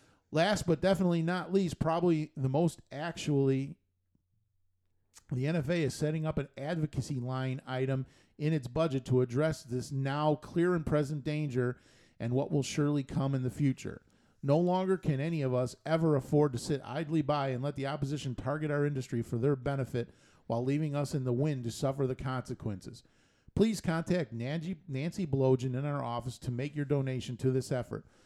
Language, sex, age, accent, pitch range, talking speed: English, male, 40-59, American, 120-150 Hz, 175 wpm